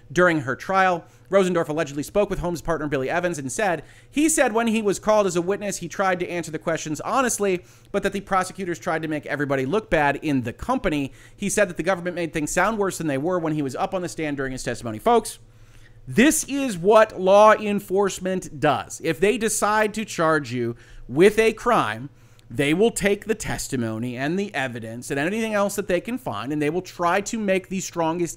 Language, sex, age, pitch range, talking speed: English, male, 30-49, 145-205 Hz, 220 wpm